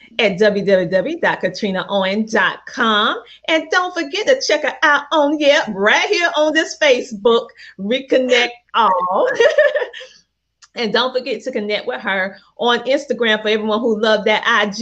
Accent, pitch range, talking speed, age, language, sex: American, 195-260 Hz, 130 wpm, 30-49, English, female